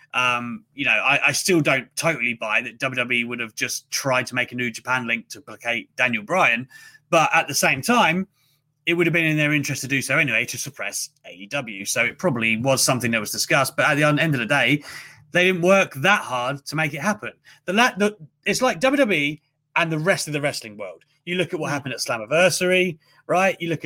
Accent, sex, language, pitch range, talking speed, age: British, male, English, 140-190 Hz, 230 wpm, 30-49